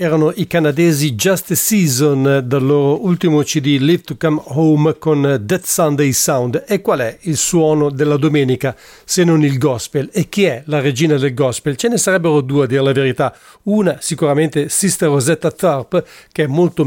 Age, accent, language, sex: 50-69, Italian, English, male